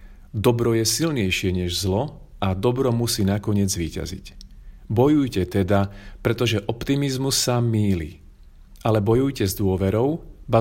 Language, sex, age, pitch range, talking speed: Slovak, male, 40-59, 90-120 Hz, 120 wpm